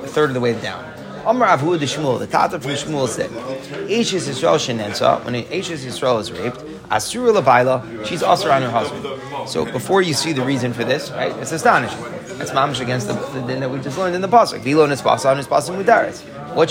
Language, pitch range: English, 115-150 Hz